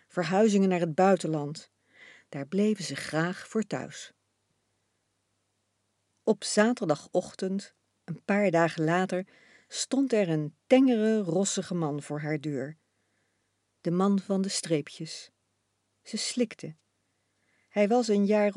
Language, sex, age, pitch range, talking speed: Dutch, female, 50-69, 145-210 Hz, 115 wpm